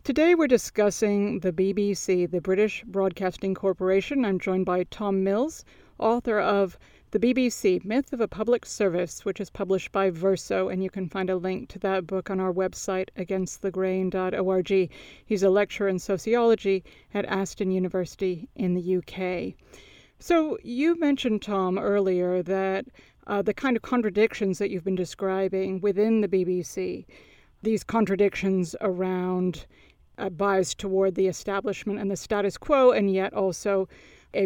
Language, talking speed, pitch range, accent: English, 150 wpm, 190-215 Hz, American